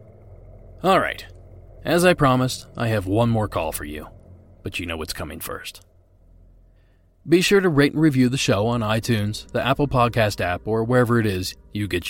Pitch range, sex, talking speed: 95-150 Hz, male, 190 wpm